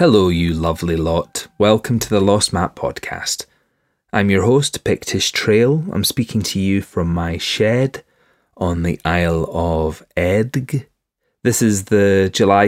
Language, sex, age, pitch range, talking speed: English, male, 30-49, 90-120 Hz, 145 wpm